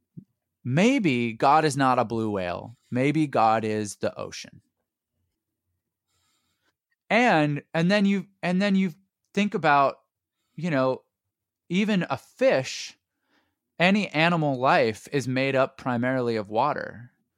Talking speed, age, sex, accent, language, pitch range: 120 wpm, 30-49, male, American, English, 115-160 Hz